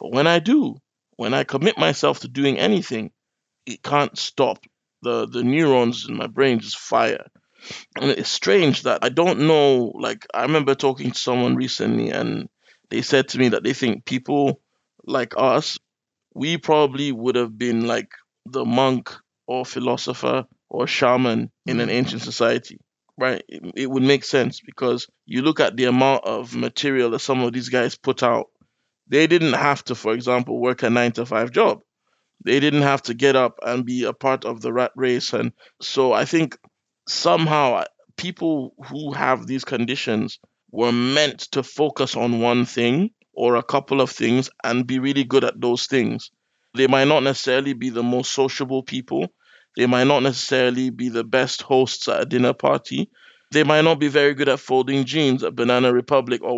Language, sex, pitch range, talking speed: English, male, 120-140 Hz, 185 wpm